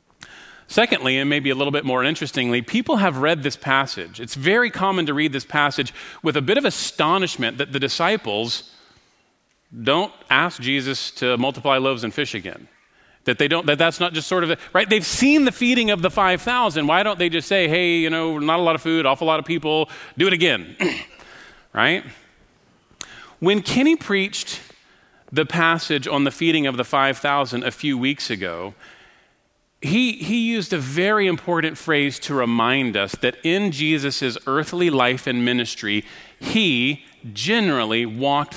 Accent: American